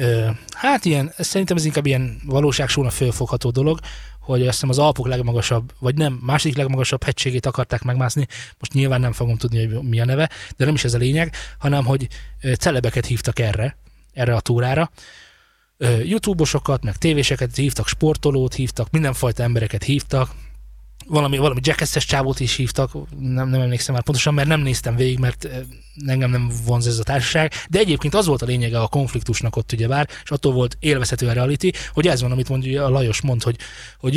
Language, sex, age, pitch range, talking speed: Hungarian, male, 20-39, 125-145 Hz, 180 wpm